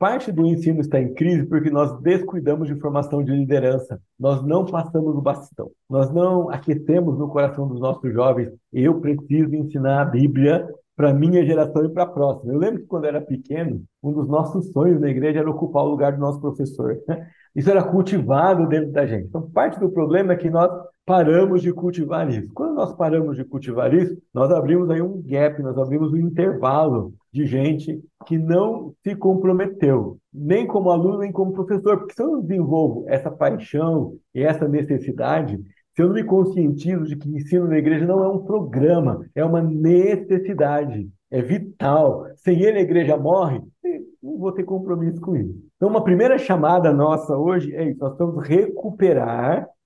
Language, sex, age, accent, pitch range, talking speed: Portuguese, male, 60-79, Brazilian, 145-180 Hz, 185 wpm